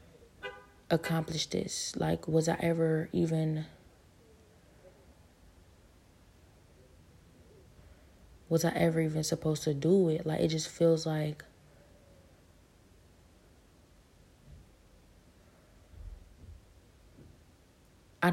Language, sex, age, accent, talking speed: English, female, 20-39, American, 70 wpm